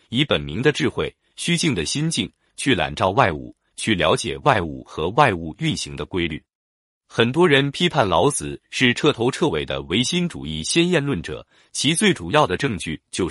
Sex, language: male, Chinese